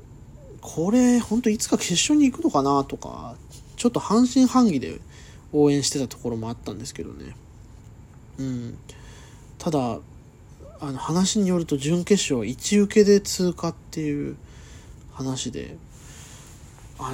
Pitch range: 125-180 Hz